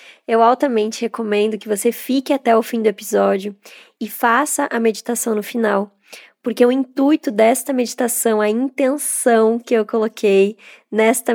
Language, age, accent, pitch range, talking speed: Portuguese, 20-39, Brazilian, 225-275 Hz, 150 wpm